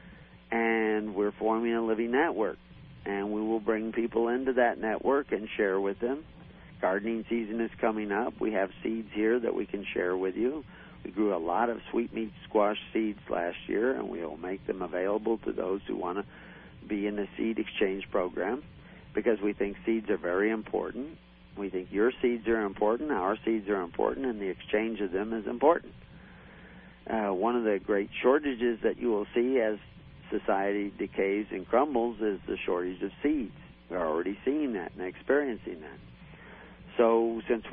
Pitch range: 100-115 Hz